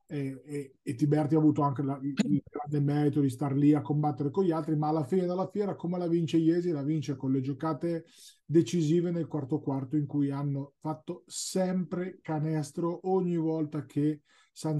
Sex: male